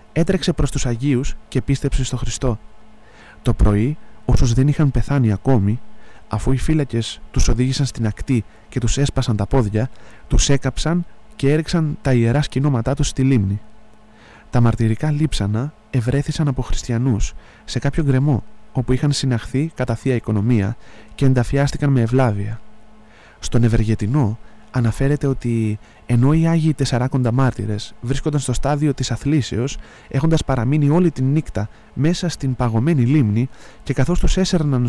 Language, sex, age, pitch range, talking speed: English, male, 20-39, 115-145 Hz, 145 wpm